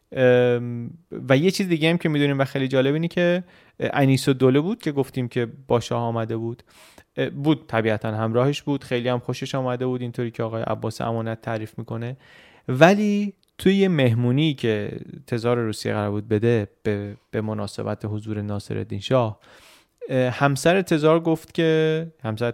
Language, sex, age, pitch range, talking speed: Persian, male, 30-49, 115-155 Hz, 150 wpm